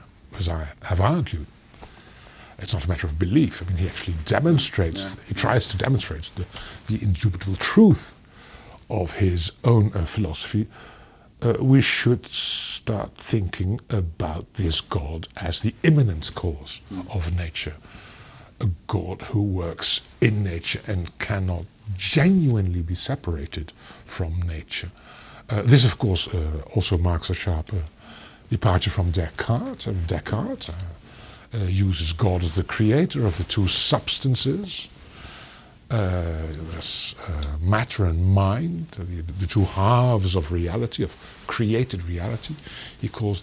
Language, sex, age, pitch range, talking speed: Romanian, male, 60-79, 90-115 Hz, 135 wpm